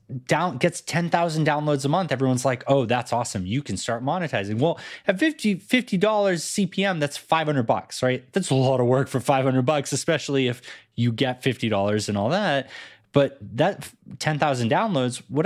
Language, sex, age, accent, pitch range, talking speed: English, male, 20-39, American, 110-160 Hz, 175 wpm